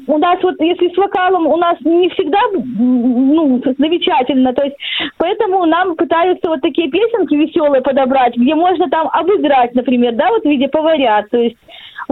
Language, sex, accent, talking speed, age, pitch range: Russian, female, native, 170 wpm, 20-39, 285-360 Hz